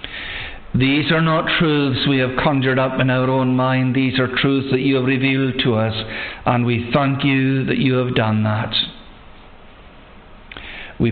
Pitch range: 120-135 Hz